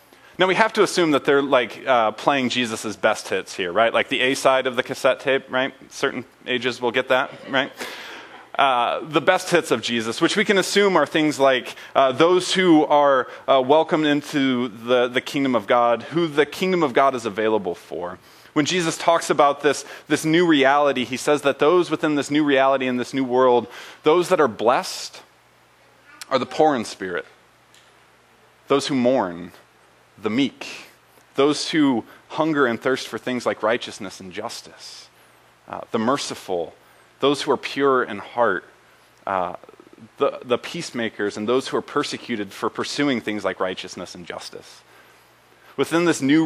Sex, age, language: male, 30-49, English